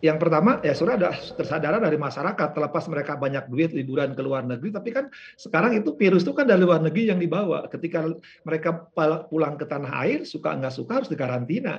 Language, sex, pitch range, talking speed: Indonesian, male, 140-195 Hz, 200 wpm